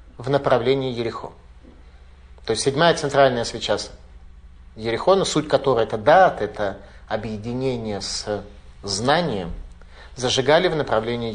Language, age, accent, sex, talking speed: Russian, 30-49, native, male, 105 wpm